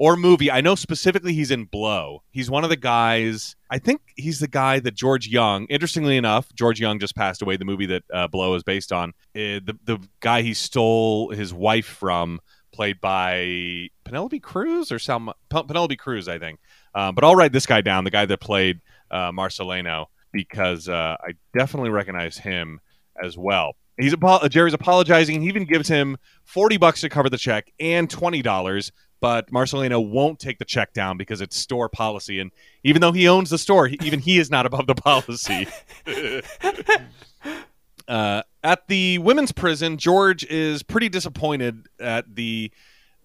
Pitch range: 100-155 Hz